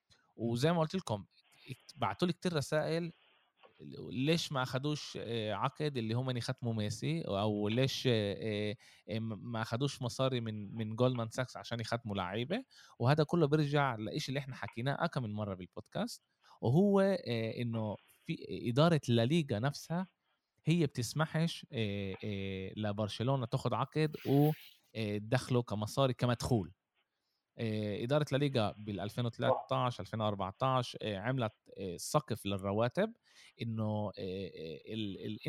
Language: Arabic